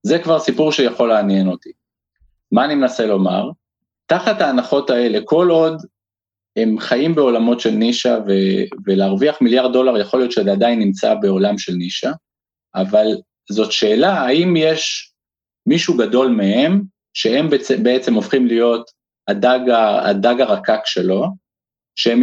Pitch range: 110-150 Hz